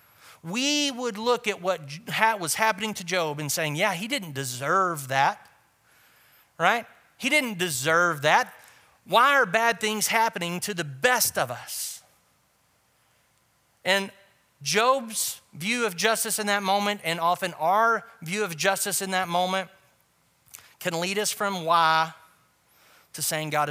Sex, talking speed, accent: male, 140 wpm, American